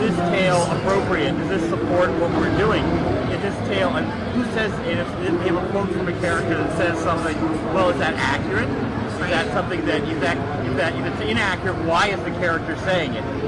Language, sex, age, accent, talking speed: English, male, 40-59, American, 225 wpm